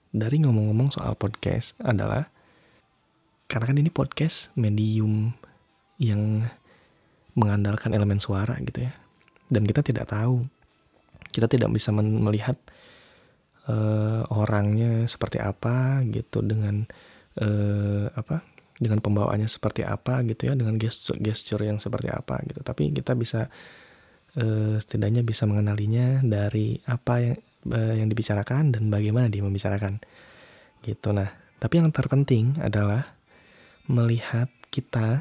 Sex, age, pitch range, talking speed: male, 20-39, 105-125 Hz, 120 wpm